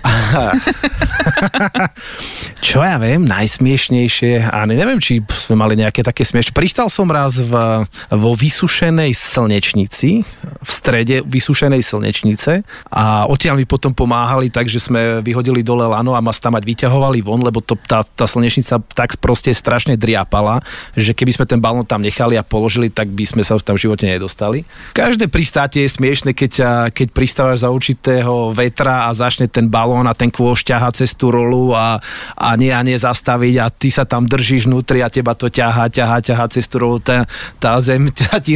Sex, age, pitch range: male, 30-49, 115-145 Hz